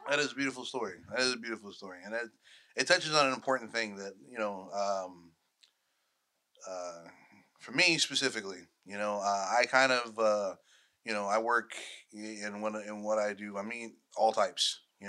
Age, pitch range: 20-39, 105-135 Hz